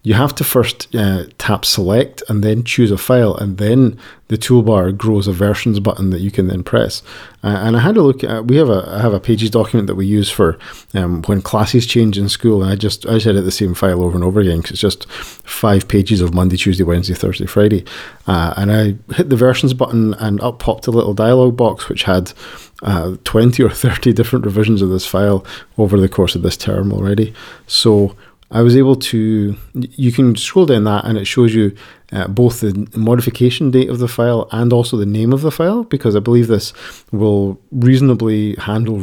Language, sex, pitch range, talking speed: English, male, 100-120 Hz, 220 wpm